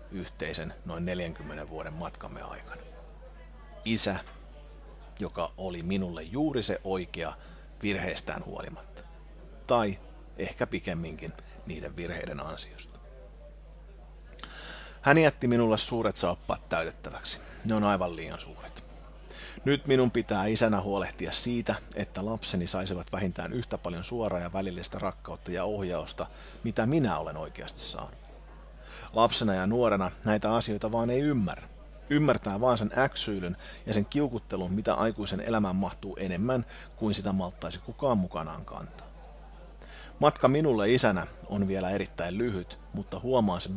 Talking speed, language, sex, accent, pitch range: 125 wpm, Finnish, male, native, 90-115 Hz